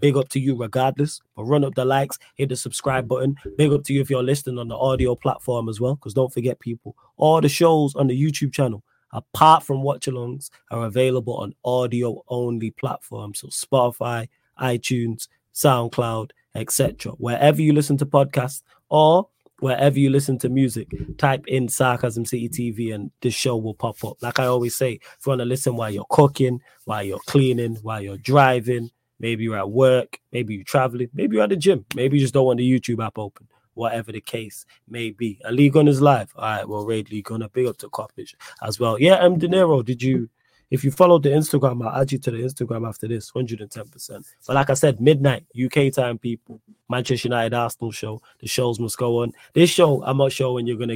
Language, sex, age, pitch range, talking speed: English, male, 20-39, 115-135 Hz, 210 wpm